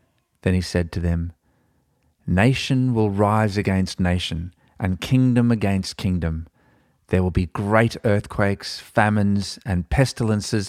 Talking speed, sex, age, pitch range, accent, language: 125 wpm, male, 40-59, 90-110 Hz, Australian, English